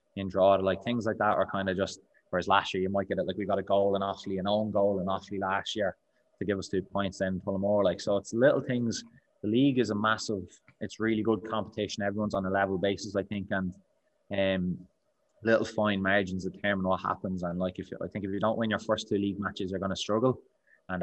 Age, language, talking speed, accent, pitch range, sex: 20-39, English, 255 wpm, Irish, 95-100 Hz, male